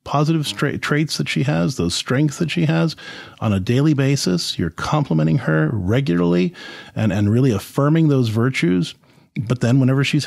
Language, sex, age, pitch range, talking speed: English, male, 40-59, 115-160 Hz, 165 wpm